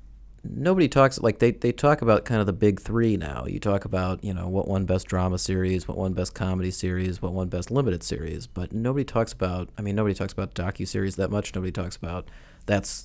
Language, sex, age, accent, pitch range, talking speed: English, male, 30-49, American, 95-110 Hz, 225 wpm